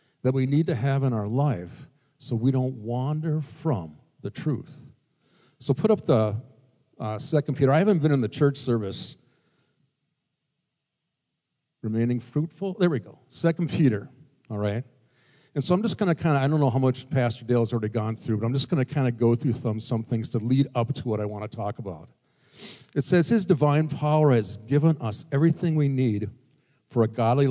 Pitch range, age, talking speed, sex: 115-150 Hz, 50-69, 200 wpm, male